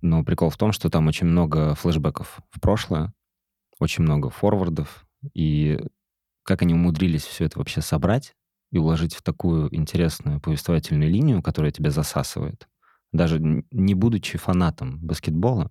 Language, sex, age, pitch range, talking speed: Russian, male, 20-39, 80-105 Hz, 140 wpm